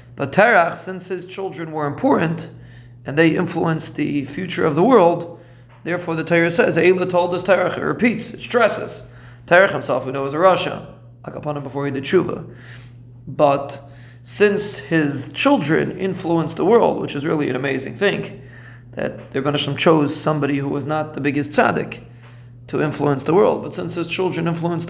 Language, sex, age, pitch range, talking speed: English, male, 30-49, 125-175 Hz, 175 wpm